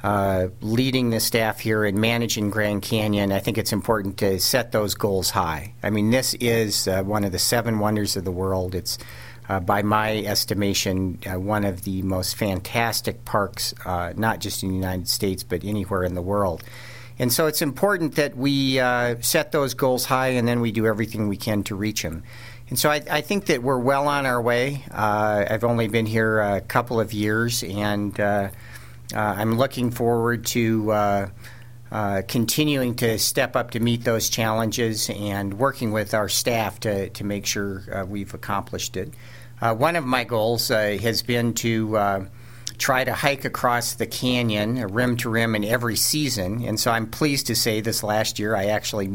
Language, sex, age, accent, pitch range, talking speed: English, male, 50-69, American, 100-120 Hz, 195 wpm